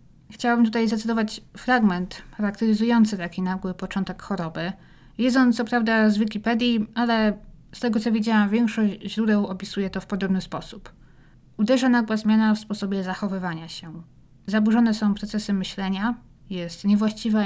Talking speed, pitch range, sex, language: 140 wpm, 185-220 Hz, female, Polish